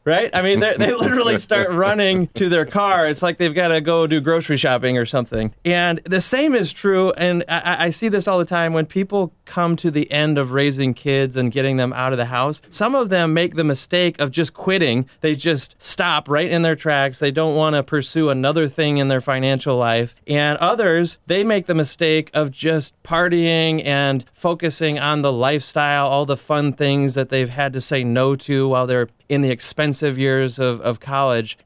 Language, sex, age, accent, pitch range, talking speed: English, male, 30-49, American, 135-170 Hz, 210 wpm